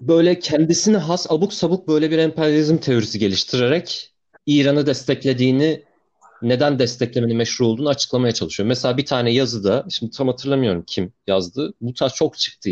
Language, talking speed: Turkish, 145 wpm